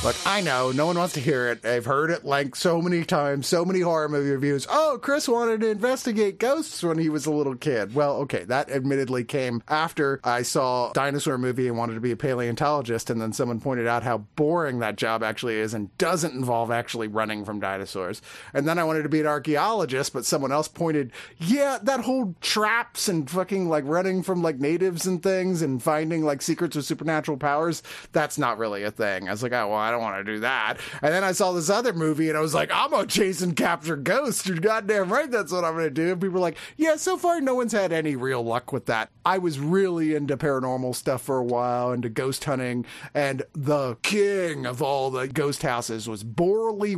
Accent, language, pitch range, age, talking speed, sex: American, English, 125-175 Hz, 30-49, 225 wpm, male